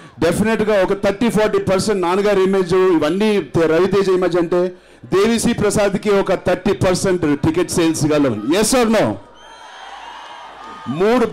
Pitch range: 160-205 Hz